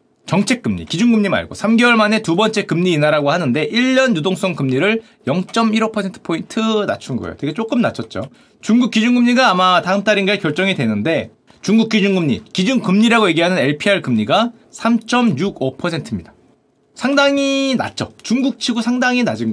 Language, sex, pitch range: Korean, male, 175-245 Hz